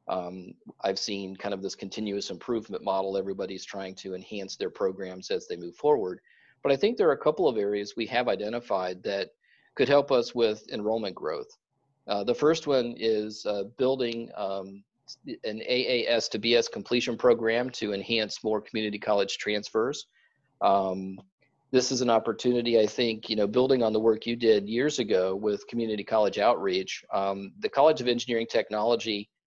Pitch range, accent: 100-120 Hz, American